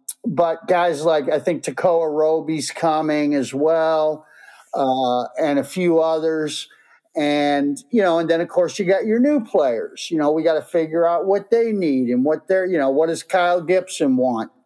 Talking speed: 190 wpm